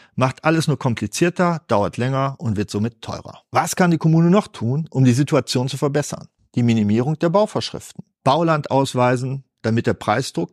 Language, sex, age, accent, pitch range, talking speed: German, male, 50-69, German, 125-170 Hz, 170 wpm